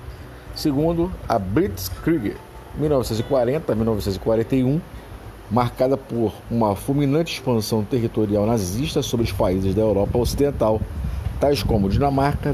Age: 50-69